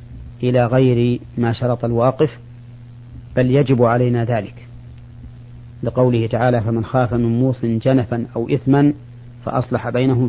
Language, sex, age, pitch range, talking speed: Arabic, male, 40-59, 120-125 Hz, 115 wpm